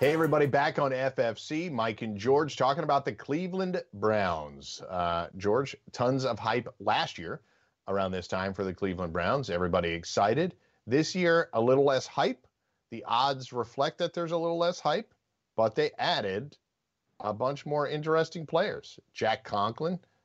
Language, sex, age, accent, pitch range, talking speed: English, male, 40-59, American, 100-130 Hz, 160 wpm